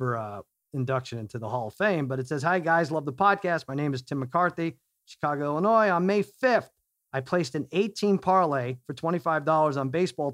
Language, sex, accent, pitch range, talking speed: English, male, American, 140-185 Hz, 195 wpm